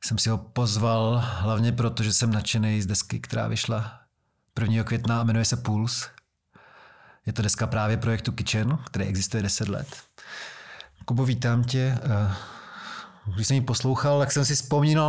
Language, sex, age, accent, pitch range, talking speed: Czech, male, 40-59, native, 110-130 Hz, 160 wpm